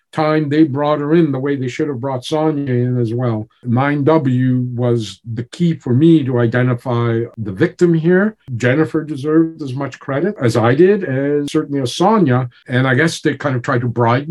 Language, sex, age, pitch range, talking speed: English, male, 50-69, 120-160 Hz, 195 wpm